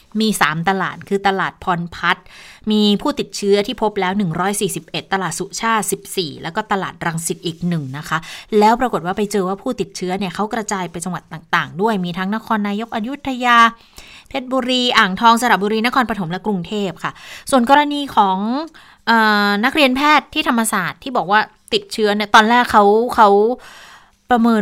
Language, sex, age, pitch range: Thai, female, 20-39, 175-225 Hz